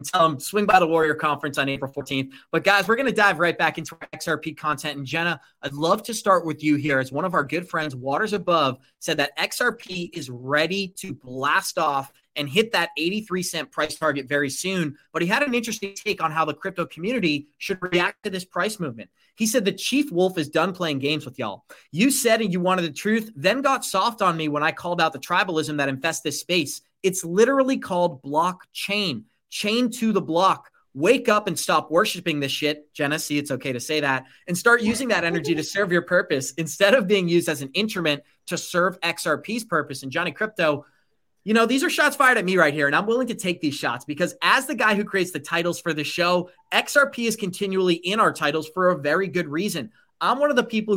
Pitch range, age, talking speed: 150-200 Hz, 30-49, 230 wpm